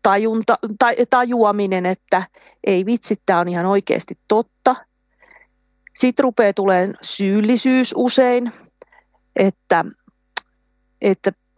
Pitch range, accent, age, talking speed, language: 185-230 Hz, native, 30-49, 85 wpm, Finnish